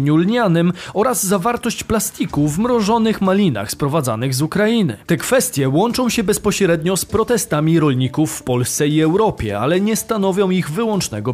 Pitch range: 155-230 Hz